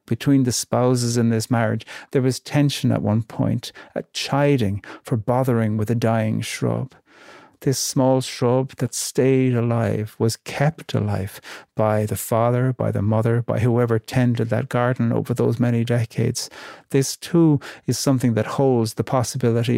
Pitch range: 110-125 Hz